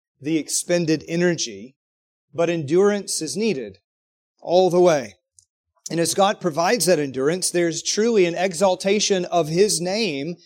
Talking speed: 130 wpm